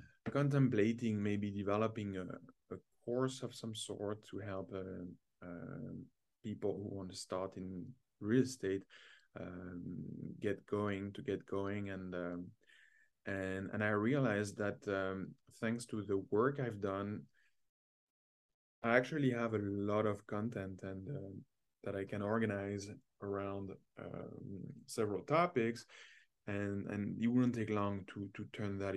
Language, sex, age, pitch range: English, male, 20-39, 95-120 Hz